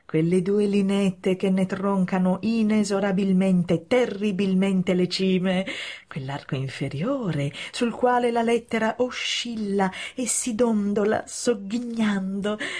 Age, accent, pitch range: 30-49, native, 185-250 Hz